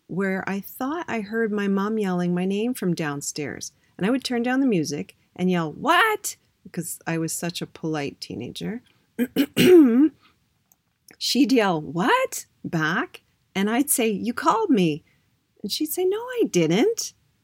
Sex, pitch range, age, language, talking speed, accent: female, 170-225 Hz, 40-59, English, 155 wpm, American